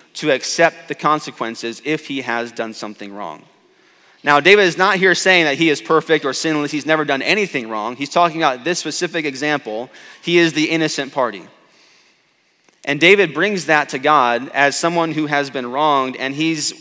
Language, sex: English, male